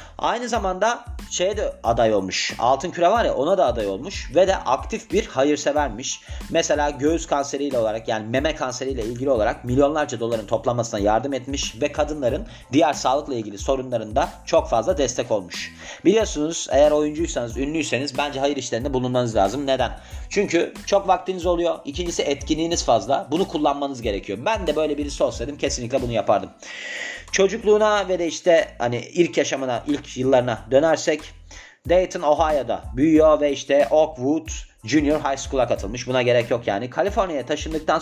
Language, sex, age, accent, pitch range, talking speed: Turkish, male, 40-59, native, 125-165 Hz, 155 wpm